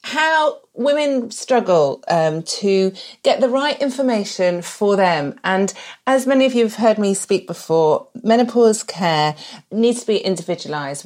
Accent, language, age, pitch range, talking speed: British, English, 40-59, 175-235 Hz, 145 wpm